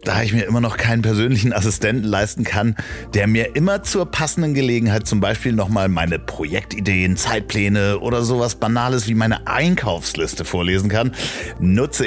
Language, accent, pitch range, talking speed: German, German, 90-115 Hz, 155 wpm